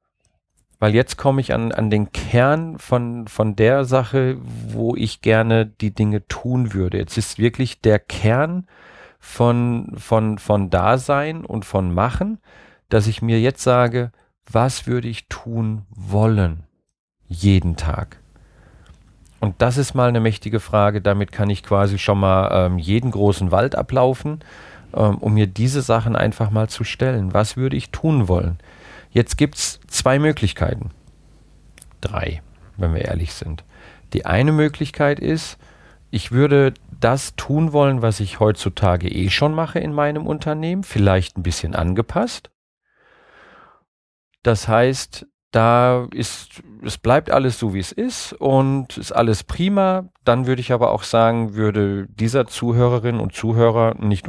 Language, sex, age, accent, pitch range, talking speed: German, male, 40-59, German, 95-125 Hz, 145 wpm